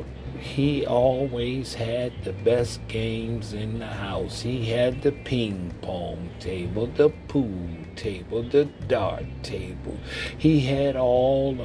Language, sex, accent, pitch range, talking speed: English, male, American, 90-130 Hz, 125 wpm